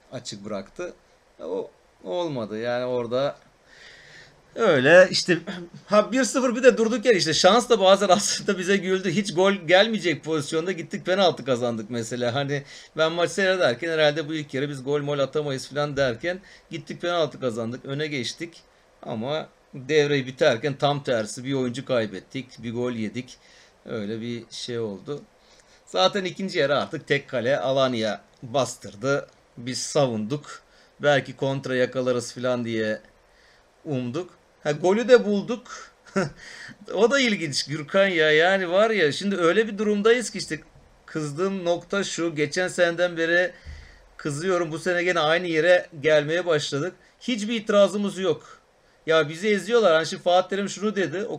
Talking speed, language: 145 wpm, Turkish